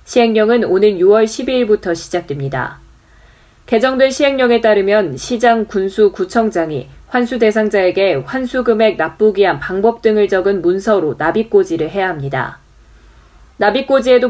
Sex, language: female, Korean